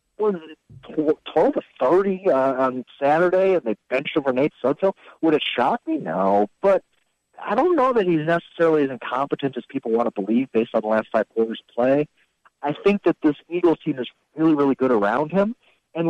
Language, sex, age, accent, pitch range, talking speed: English, male, 50-69, American, 130-215 Hz, 190 wpm